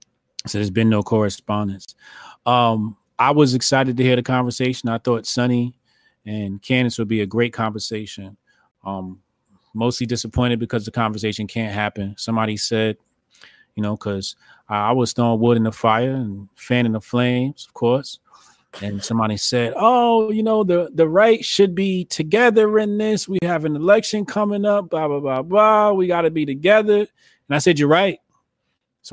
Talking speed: 175 wpm